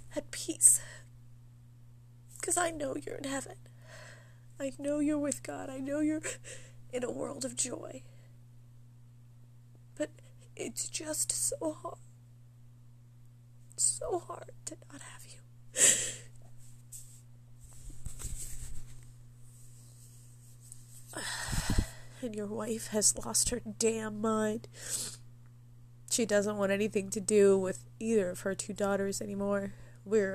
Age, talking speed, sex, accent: 20-39, 105 wpm, female, American